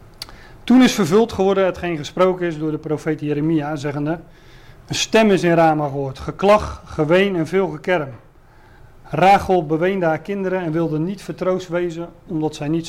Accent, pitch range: Dutch, 150-185 Hz